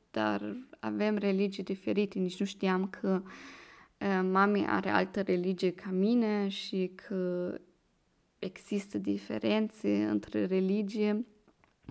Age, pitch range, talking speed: 20-39, 185-225 Hz, 105 wpm